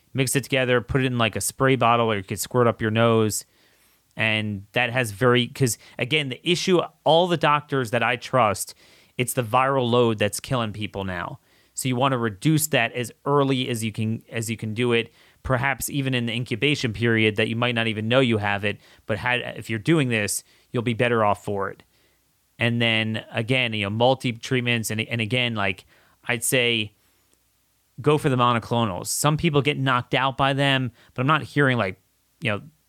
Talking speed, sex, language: 205 wpm, male, English